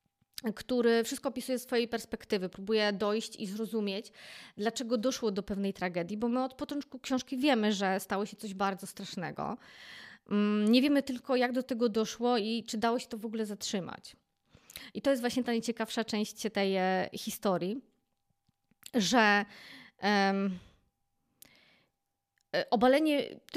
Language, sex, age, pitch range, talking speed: Polish, female, 20-39, 210-250 Hz, 135 wpm